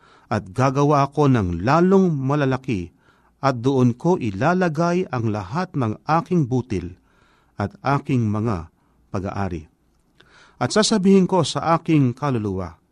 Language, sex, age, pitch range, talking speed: Filipino, male, 50-69, 115-170 Hz, 115 wpm